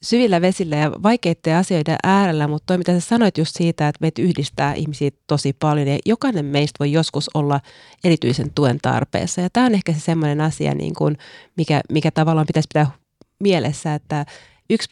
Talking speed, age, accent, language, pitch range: 180 wpm, 30-49, native, Finnish, 145-175 Hz